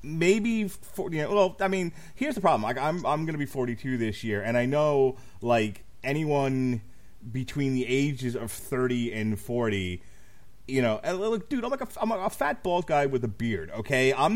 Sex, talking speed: male, 200 wpm